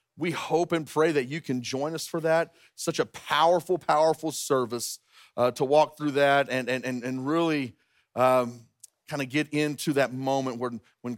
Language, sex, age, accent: English, male, 40-59, American